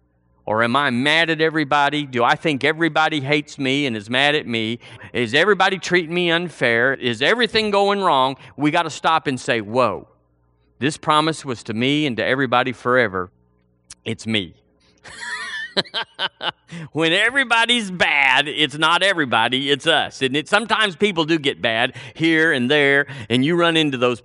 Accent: American